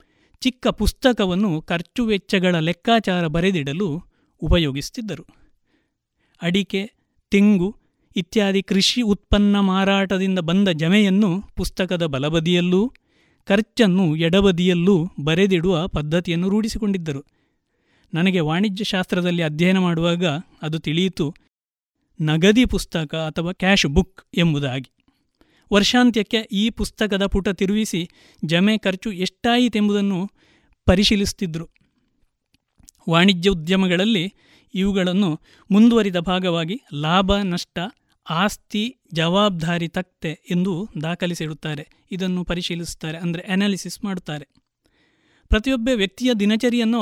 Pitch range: 170-205 Hz